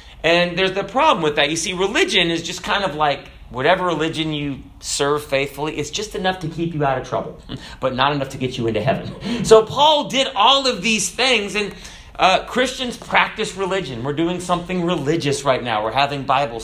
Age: 30-49